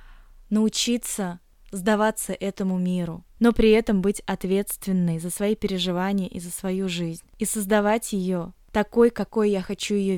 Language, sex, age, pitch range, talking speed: Russian, female, 20-39, 190-225 Hz, 140 wpm